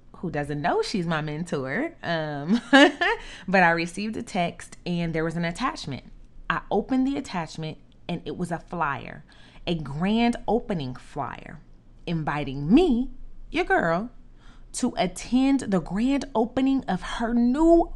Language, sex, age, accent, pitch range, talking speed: English, female, 30-49, American, 175-265 Hz, 140 wpm